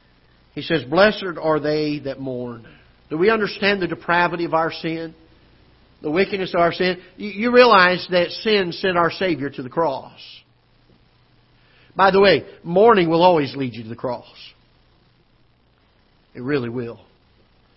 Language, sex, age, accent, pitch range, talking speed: English, male, 50-69, American, 140-225 Hz, 150 wpm